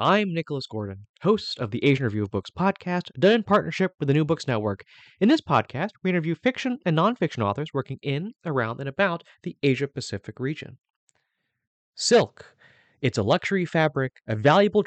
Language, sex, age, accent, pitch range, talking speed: English, male, 20-39, American, 120-190 Hz, 175 wpm